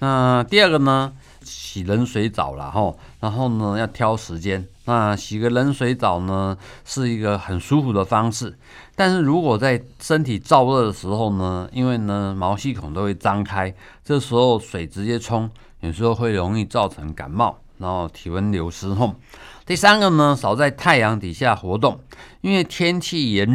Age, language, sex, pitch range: 50-69, Chinese, male, 105-135 Hz